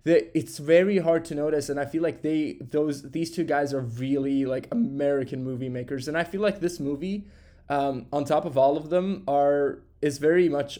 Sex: male